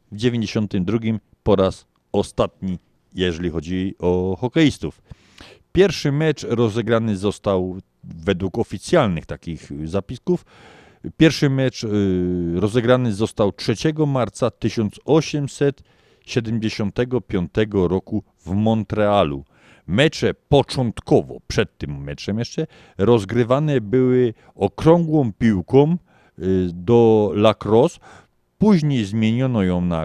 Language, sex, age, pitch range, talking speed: Polish, male, 50-69, 95-125 Hz, 90 wpm